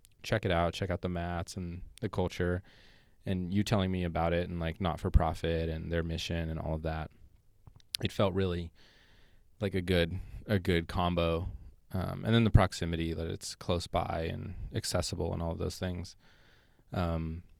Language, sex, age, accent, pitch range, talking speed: English, male, 20-39, American, 85-100 Hz, 175 wpm